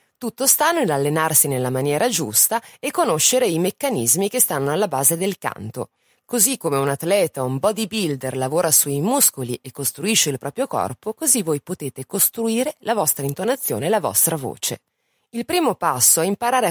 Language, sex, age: Italian, female, 30-49